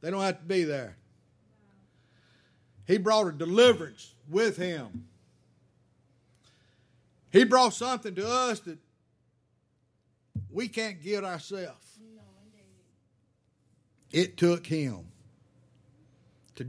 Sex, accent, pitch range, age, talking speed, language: male, American, 120-180 Hz, 50-69, 95 wpm, English